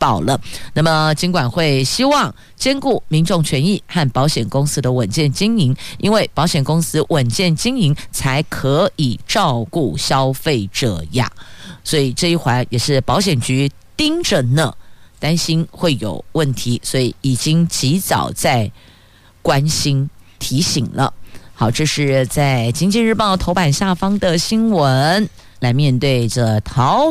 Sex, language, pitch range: female, Chinese, 125-170 Hz